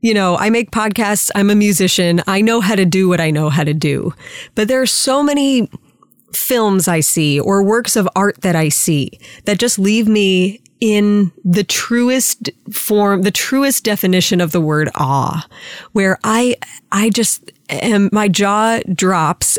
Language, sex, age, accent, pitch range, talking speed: English, female, 30-49, American, 180-230 Hz, 175 wpm